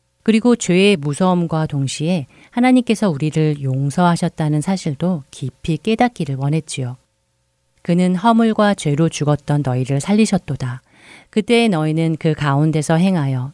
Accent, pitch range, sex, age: native, 140-180 Hz, female, 40-59